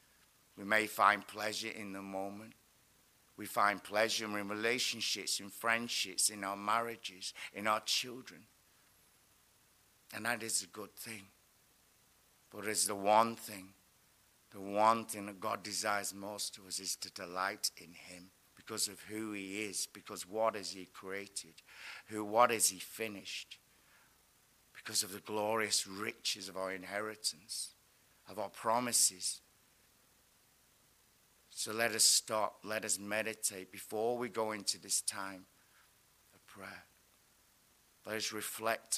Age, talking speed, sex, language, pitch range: 60-79, 135 wpm, male, English, 95-110 Hz